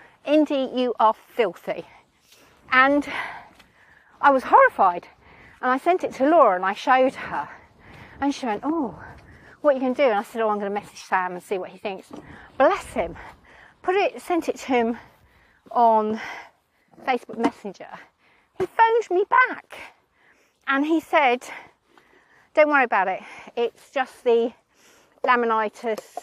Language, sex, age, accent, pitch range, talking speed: English, female, 40-59, British, 215-300 Hz, 155 wpm